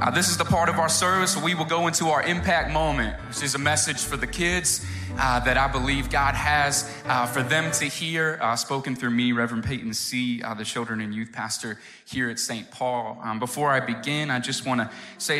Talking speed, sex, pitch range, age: 235 wpm, male, 110-140 Hz, 20-39